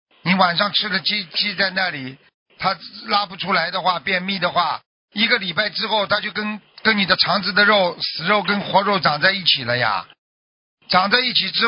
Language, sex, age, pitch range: Chinese, male, 50-69, 180-230 Hz